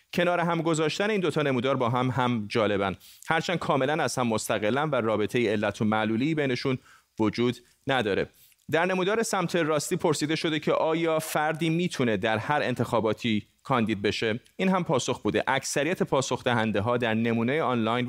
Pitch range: 115-155 Hz